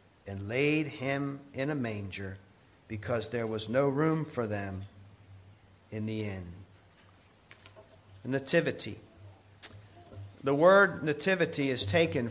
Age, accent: 50-69, American